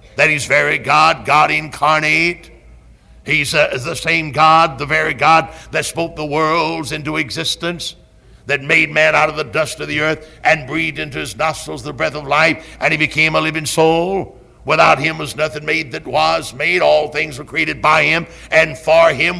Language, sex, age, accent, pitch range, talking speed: English, male, 60-79, American, 145-165 Hz, 190 wpm